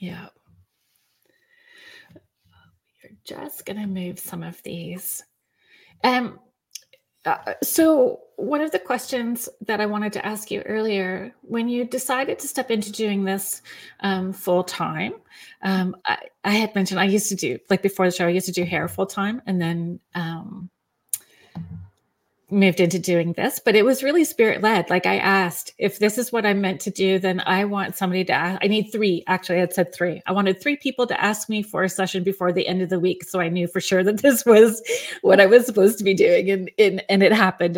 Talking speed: 205 wpm